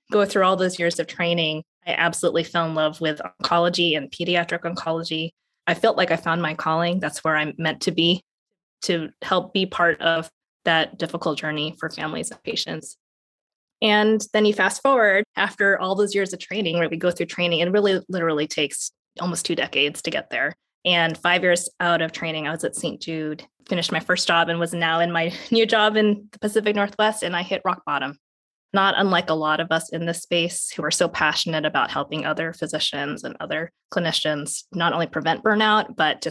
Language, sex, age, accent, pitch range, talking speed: English, female, 20-39, American, 160-195 Hz, 205 wpm